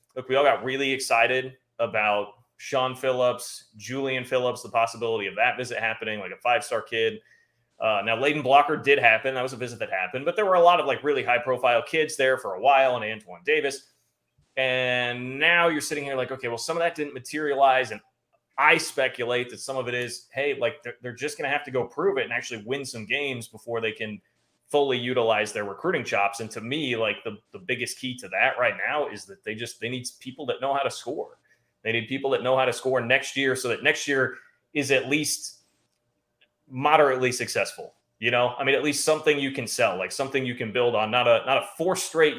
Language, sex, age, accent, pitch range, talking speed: English, male, 30-49, American, 125-150 Hz, 225 wpm